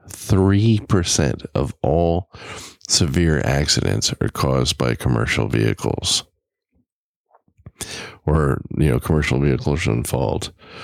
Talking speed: 95 wpm